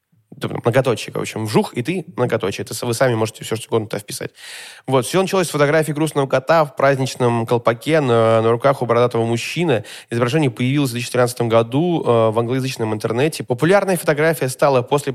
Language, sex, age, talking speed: Russian, male, 20-39, 170 wpm